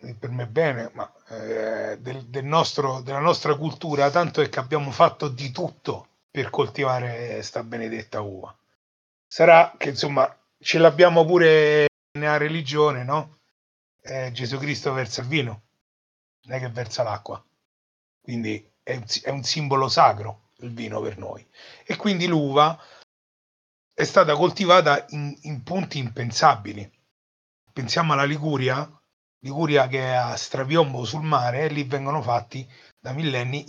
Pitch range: 120-155 Hz